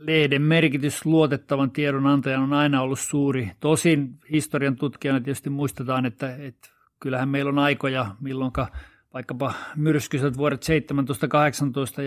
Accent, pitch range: native, 125-145 Hz